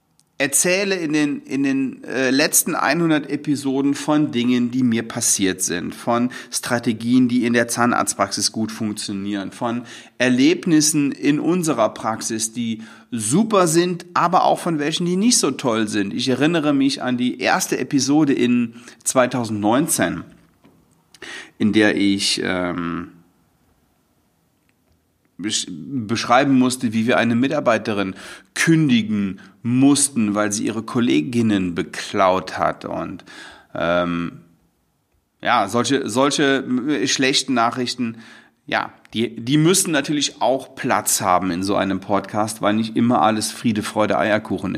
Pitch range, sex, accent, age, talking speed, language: 105-145 Hz, male, German, 40-59, 120 wpm, German